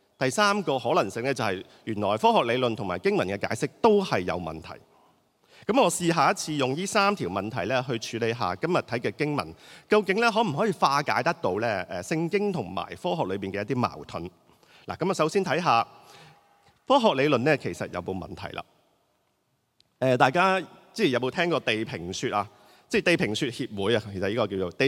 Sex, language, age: male, Chinese, 30-49